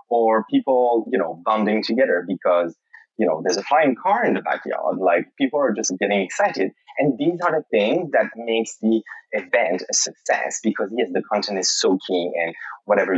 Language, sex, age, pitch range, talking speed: English, male, 20-39, 105-155 Hz, 190 wpm